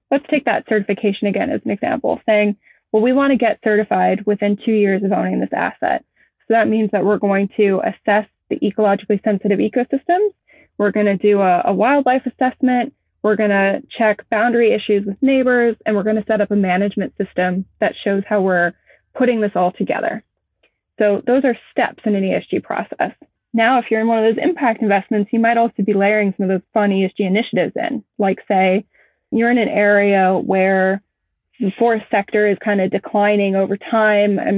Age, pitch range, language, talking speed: 20-39, 195-220 Hz, English, 195 wpm